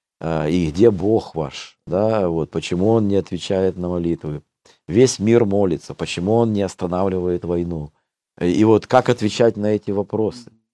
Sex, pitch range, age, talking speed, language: male, 85-110 Hz, 50-69, 150 wpm, Russian